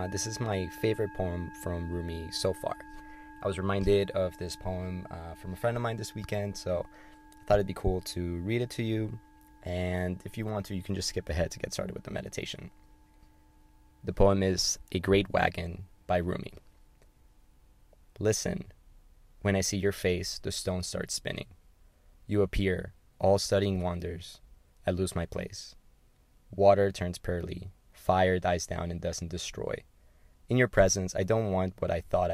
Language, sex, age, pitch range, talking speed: English, male, 20-39, 85-100 Hz, 180 wpm